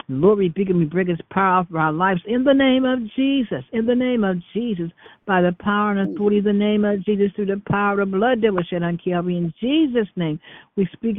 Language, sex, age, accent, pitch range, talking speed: English, female, 60-79, American, 175-210 Hz, 240 wpm